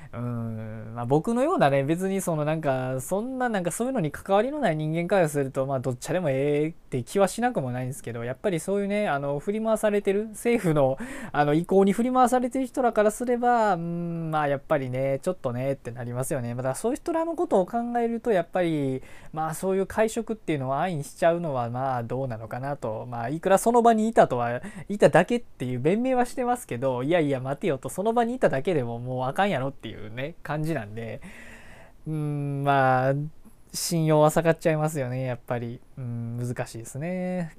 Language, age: Japanese, 20-39